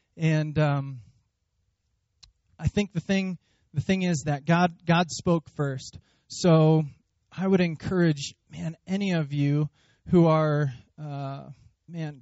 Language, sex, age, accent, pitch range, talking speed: English, male, 20-39, American, 130-155 Hz, 130 wpm